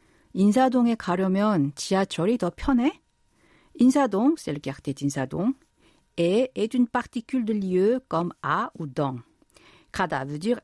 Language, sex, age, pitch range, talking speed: French, female, 50-69, 165-245 Hz, 135 wpm